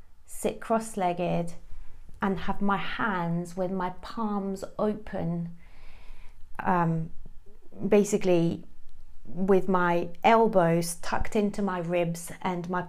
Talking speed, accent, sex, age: 100 wpm, British, female, 30-49